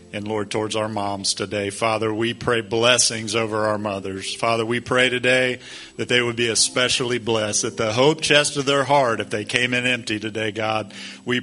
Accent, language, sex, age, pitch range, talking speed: American, English, male, 40-59, 110-125 Hz, 200 wpm